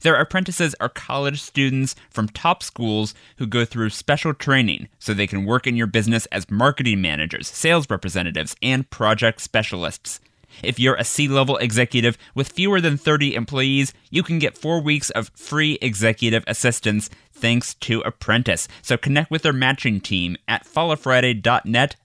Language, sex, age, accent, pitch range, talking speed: English, male, 20-39, American, 110-140 Hz, 160 wpm